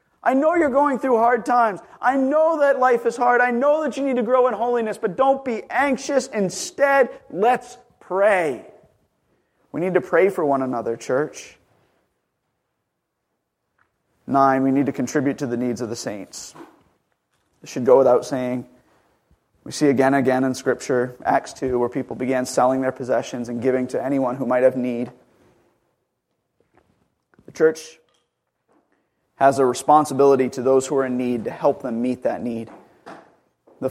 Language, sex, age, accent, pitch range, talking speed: English, male, 30-49, American, 135-200 Hz, 165 wpm